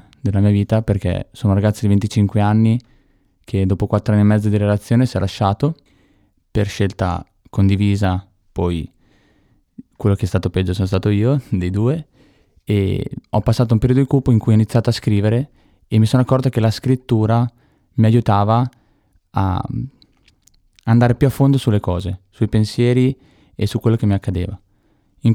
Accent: native